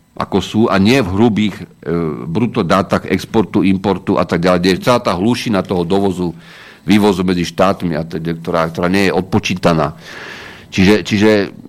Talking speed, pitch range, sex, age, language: 160 wpm, 85-110 Hz, male, 50-69, Slovak